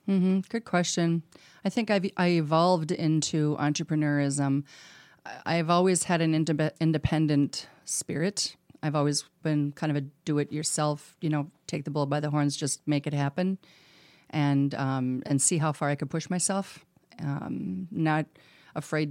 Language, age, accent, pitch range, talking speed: English, 40-59, American, 140-160 Hz, 165 wpm